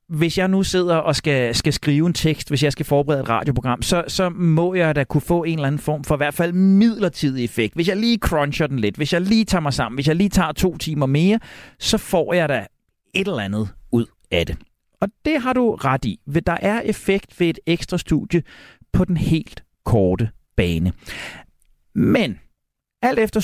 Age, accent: 40-59, native